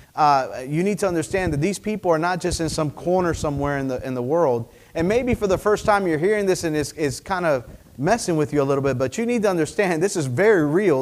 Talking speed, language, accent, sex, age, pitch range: 265 wpm, English, American, male, 40-59, 130-170 Hz